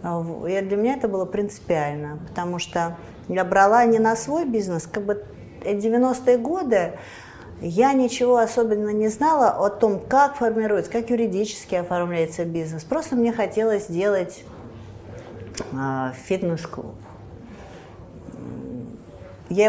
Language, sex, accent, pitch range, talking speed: Russian, female, native, 160-225 Hz, 115 wpm